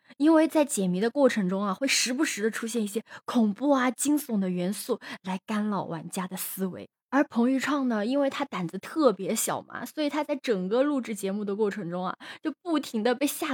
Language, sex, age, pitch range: Chinese, female, 20-39, 210-275 Hz